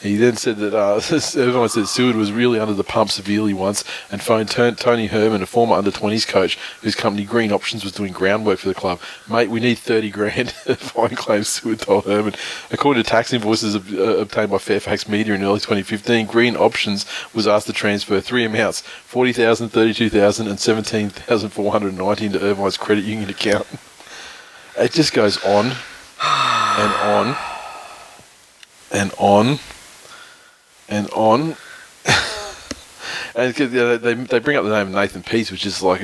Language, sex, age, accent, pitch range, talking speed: English, male, 20-39, Australian, 100-115 Hz, 160 wpm